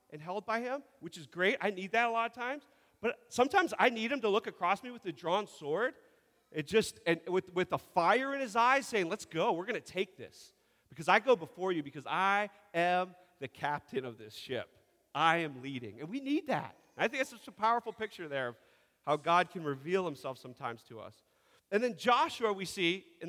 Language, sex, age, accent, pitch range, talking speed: English, male, 40-59, American, 140-210 Hz, 225 wpm